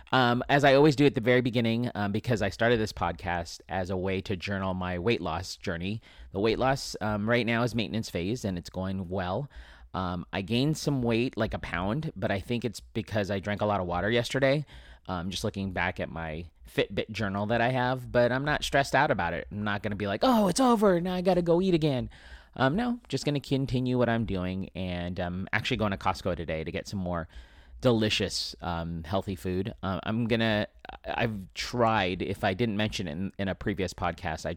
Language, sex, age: English, male, 30-49